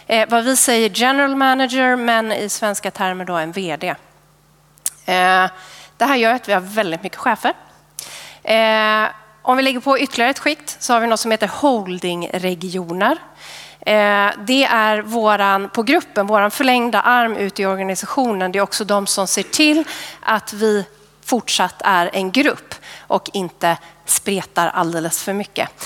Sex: female